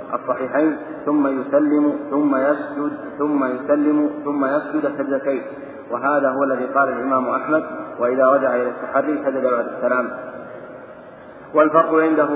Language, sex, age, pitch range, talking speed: Arabic, male, 40-59, 130-150 Hz, 120 wpm